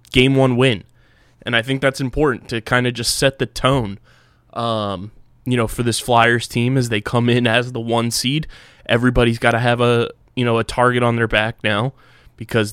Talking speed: 205 wpm